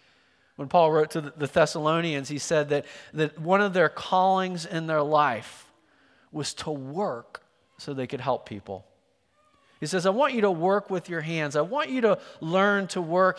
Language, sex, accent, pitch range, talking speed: English, male, American, 135-185 Hz, 190 wpm